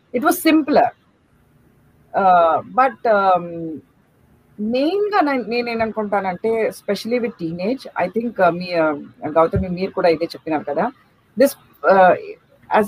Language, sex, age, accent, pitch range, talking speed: Telugu, female, 40-59, native, 175-235 Hz, 125 wpm